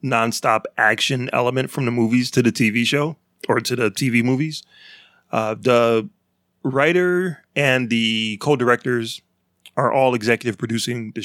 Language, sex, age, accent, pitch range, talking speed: English, male, 30-49, American, 115-145 Hz, 140 wpm